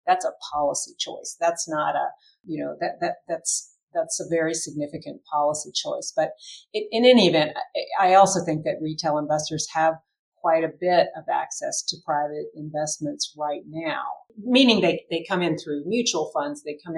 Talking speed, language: 175 wpm, English